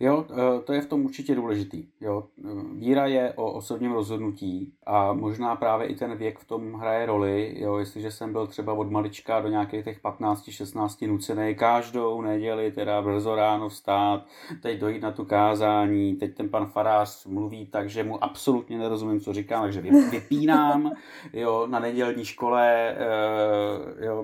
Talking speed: 160 wpm